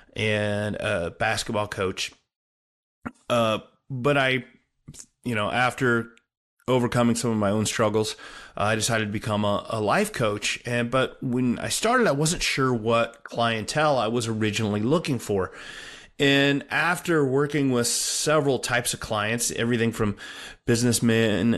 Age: 30-49